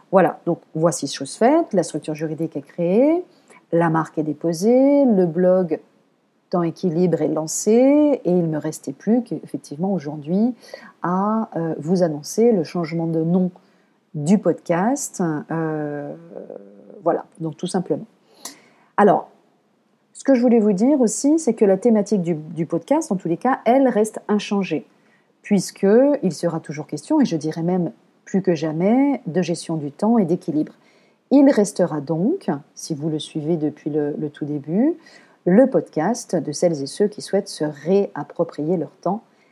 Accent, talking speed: French, 160 wpm